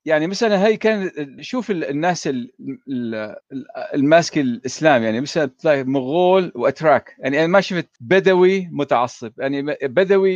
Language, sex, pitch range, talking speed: Arabic, male, 135-200 Hz, 125 wpm